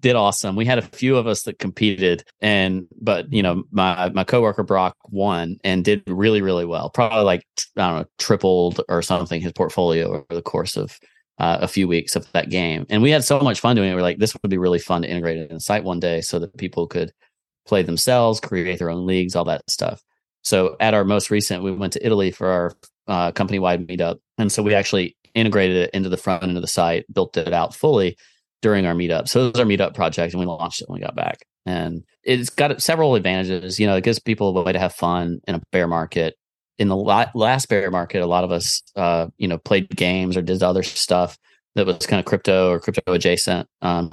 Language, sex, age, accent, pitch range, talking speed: English, male, 30-49, American, 85-105 Hz, 240 wpm